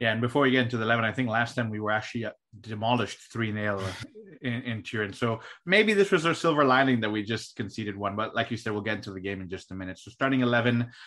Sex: male